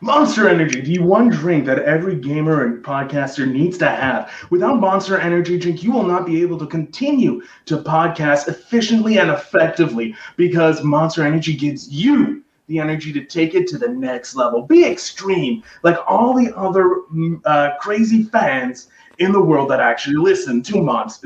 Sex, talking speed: male, 170 wpm